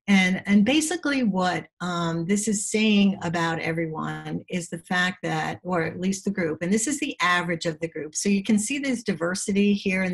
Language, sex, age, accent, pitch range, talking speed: English, female, 50-69, American, 165-200 Hz, 205 wpm